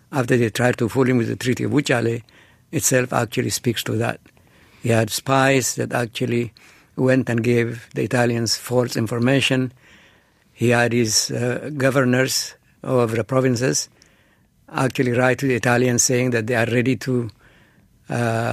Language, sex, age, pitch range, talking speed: English, male, 60-79, 115-130 Hz, 155 wpm